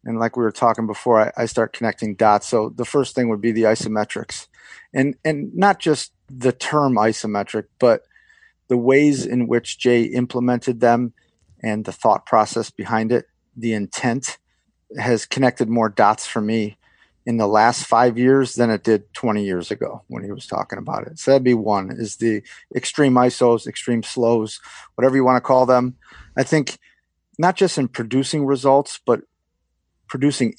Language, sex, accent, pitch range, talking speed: English, male, American, 105-135 Hz, 175 wpm